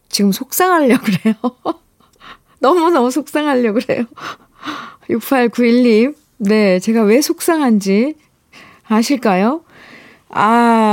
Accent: native